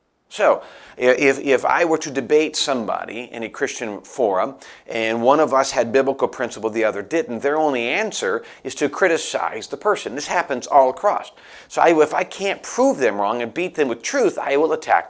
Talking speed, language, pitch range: 195 wpm, English, 125-180 Hz